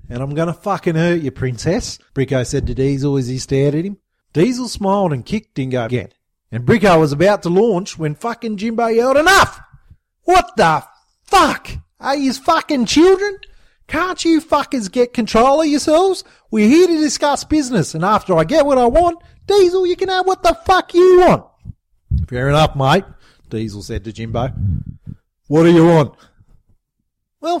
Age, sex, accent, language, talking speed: 30-49, male, Australian, English, 175 wpm